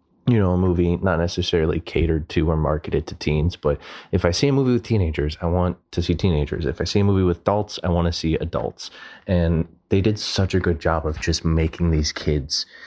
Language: English